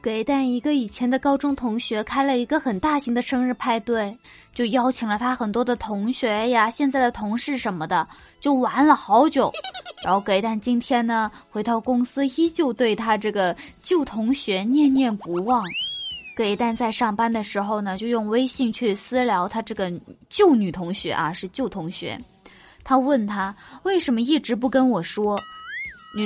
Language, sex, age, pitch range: Chinese, female, 20-39, 205-270 Hz